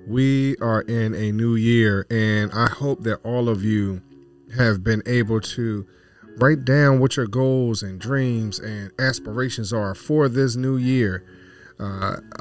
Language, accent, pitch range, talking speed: English, American, 90-120 Hz, 155 wpm